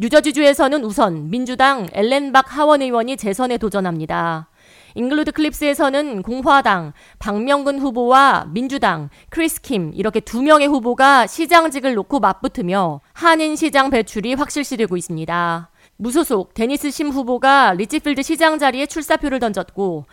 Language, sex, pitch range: Korean, female, 210-285 Hz